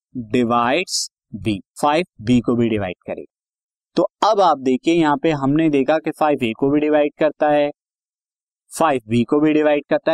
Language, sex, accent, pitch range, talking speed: Hindi, male, native, 135-180 Hz, 180 wpm